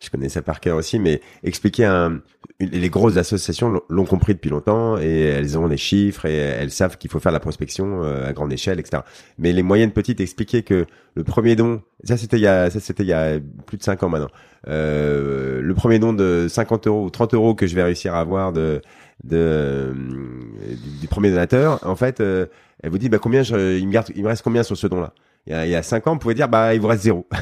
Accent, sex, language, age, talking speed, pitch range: French, male, French, 30-49, 250 wpm, 80-110 Hz